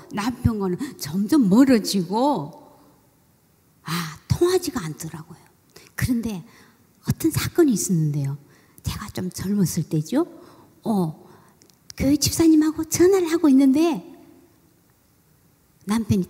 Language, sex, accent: Korean, male, native